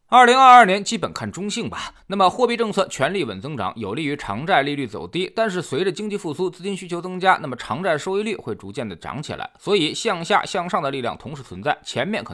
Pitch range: 135-205 Hz